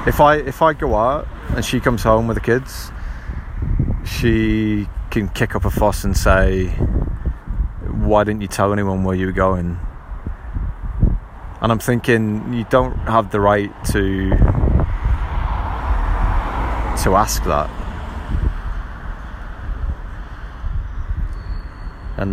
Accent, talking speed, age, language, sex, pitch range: British, 115 wpm, 20-39, English, male, 80-105 Hz